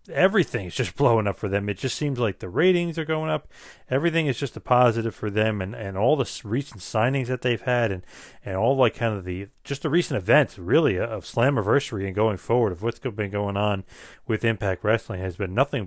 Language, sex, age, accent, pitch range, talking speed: English, male, 40-59, American, 100-130 Hz, 225 wpm